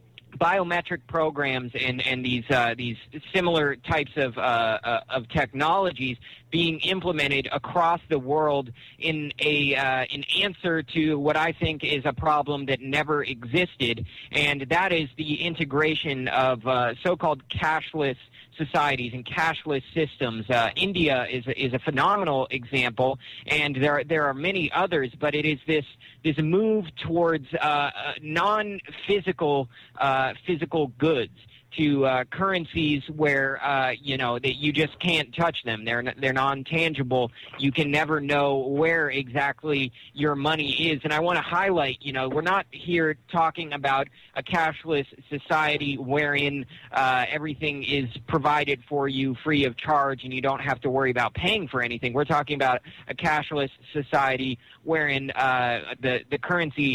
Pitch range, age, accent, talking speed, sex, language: 130-155 Hz, 30-49, American, 155 wpm, male, English